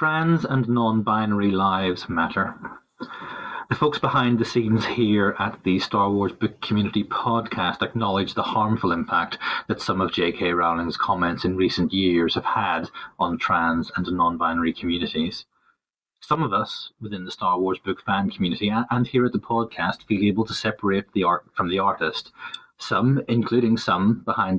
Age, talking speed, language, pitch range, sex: 30-49, 165 wpm, English, 95-125 Hz, male